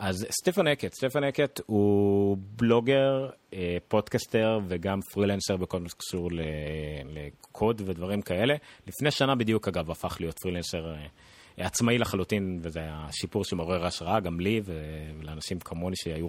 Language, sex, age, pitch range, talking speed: Hebrew, male, 30-49, 90-120 Hz, 135 wpm